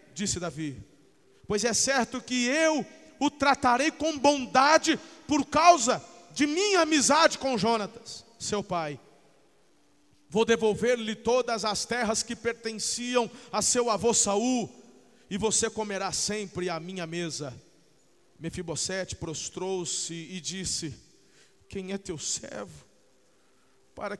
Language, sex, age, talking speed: Portuguese, male, 40-59, 115 wpm